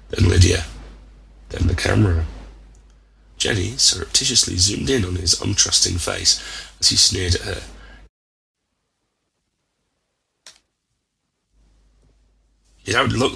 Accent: British